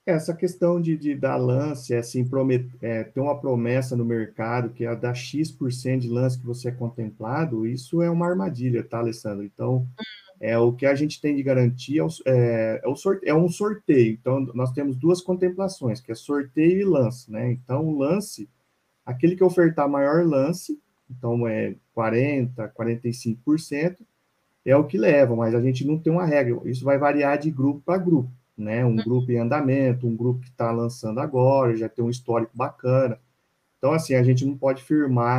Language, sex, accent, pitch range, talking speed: Portuguese, male, Brazilian, 120-155 Hz, 190 wpm